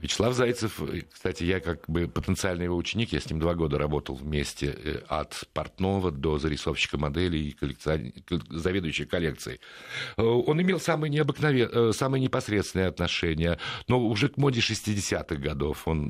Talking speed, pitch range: 140 wpm, 80-105 Hz